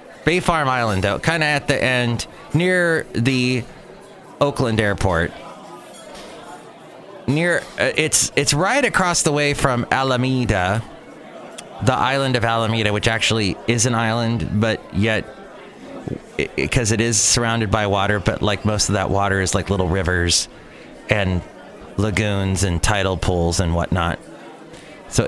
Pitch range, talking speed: 100-135 Hz, 140 wpm